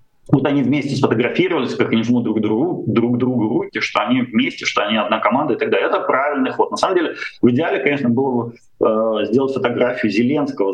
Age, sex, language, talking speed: 30-49, male, Russian, 200 wpm